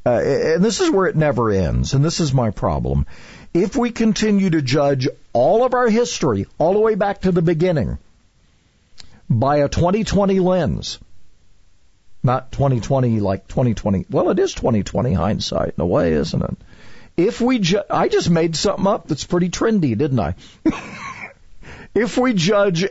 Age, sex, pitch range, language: 50-69, male, 115-175 Hz, English